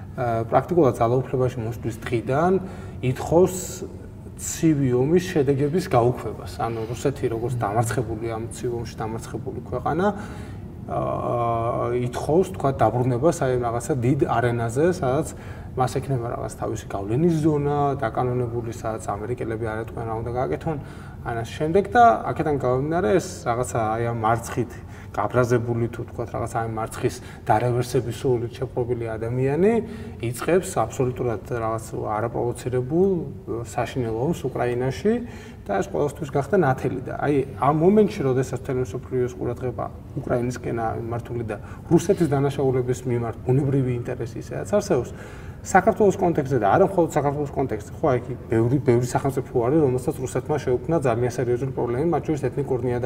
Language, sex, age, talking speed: English, male, 20-39, 85 wpm